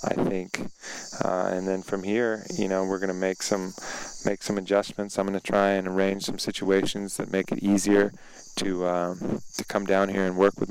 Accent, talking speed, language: American, 200 wpm, English